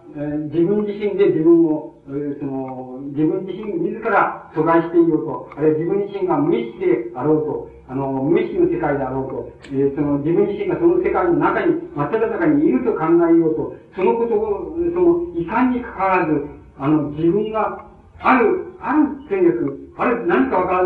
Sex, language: male, Japanese